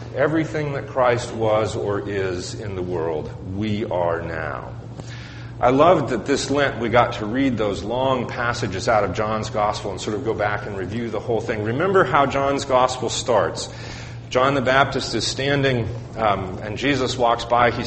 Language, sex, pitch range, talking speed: English, male, 110-130 Hz, 180 wpm